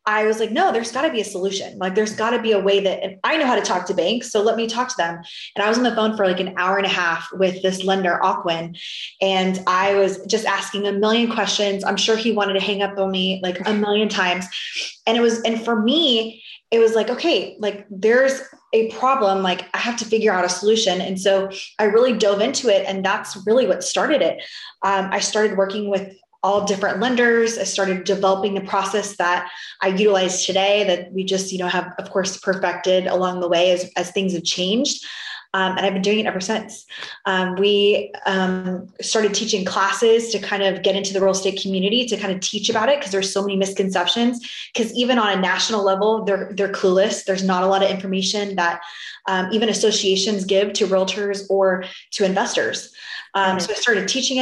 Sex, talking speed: female, 220 wpm